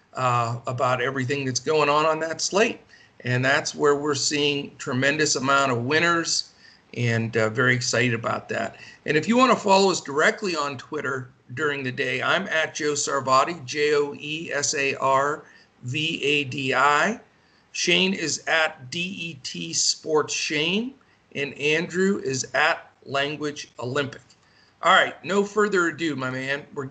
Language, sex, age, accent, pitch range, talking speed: English, male, 50-69, American, 135-165 Hz, 140 wpm